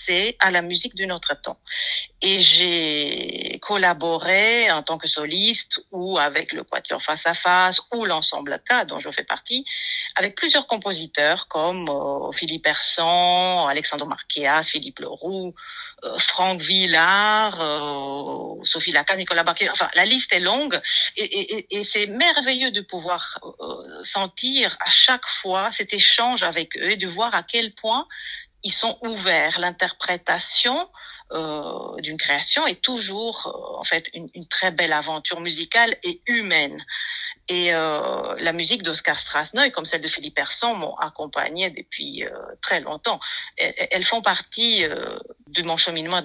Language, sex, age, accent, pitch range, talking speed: French, female, 40-59, French, 170-250 Hz, 150 wpm